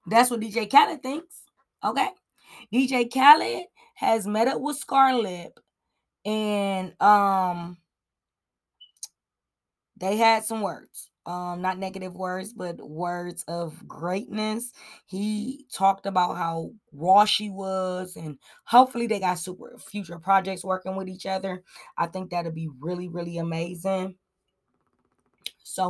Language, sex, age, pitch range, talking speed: English, female, 20-39, 180-230 Hz, 125 wpm